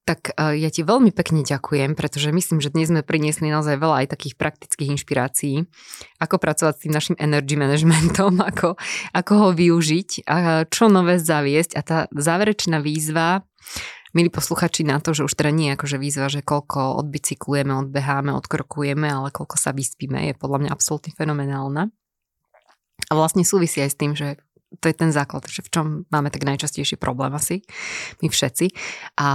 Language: Slovak